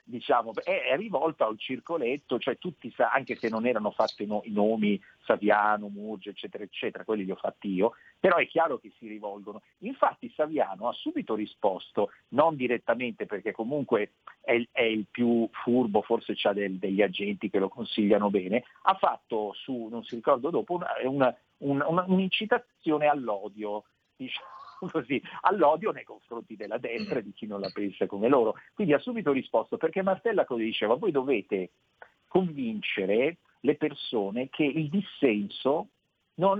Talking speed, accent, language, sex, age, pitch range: 155 wpm, native, Italian, male, 50-69, 105-150 Hz